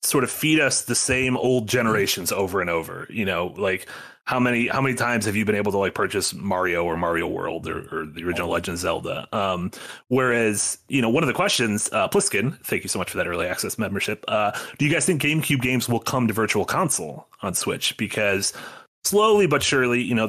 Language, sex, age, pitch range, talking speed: English, male, 30-49, 100-125 Hz, 220 wpm